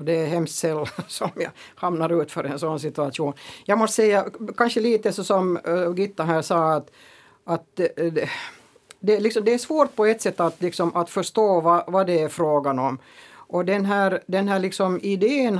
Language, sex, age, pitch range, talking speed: Swedish, female, 60-79, 165-195 Hz, 190 wpm